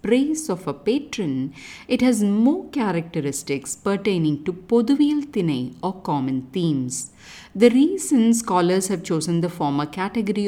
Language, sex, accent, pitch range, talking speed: English, female, Indian, 160-250 Hz, 125 wpm